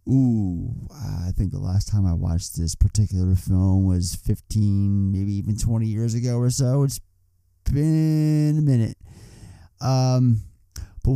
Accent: American